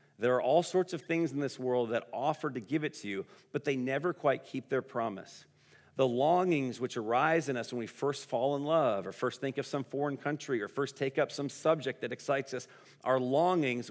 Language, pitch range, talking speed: English, 120-155 Hz, 230 wpm